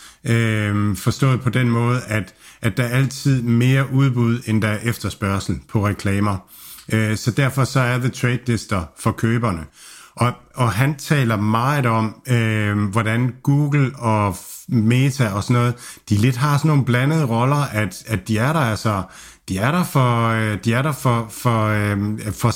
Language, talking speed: Danish, 175 wpm